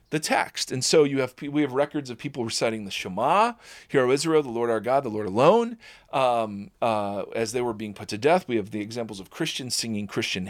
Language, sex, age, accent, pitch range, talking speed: English, male, 40-59, American, 115-160 Hz, 230 wpm